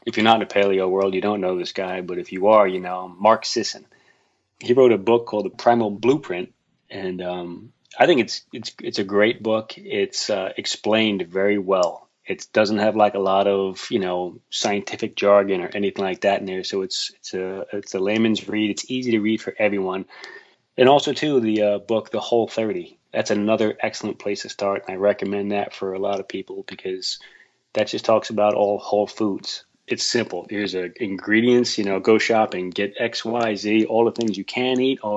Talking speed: 215 wpm